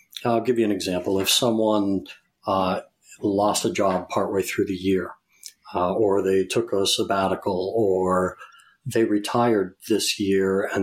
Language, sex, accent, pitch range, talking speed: English, male, American, 95-120 Hz, 150 wpm